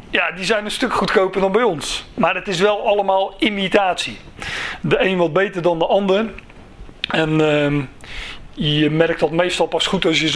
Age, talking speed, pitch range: 40-59, 190 wpm, 165-210 Hz